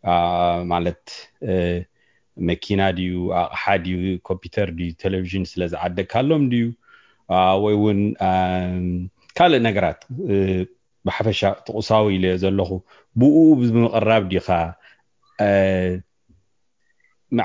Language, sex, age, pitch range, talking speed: English, male, 30-49, 95-115 Hz, 100 wpm